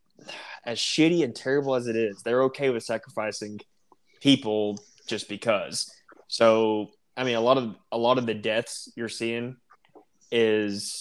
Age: 20-39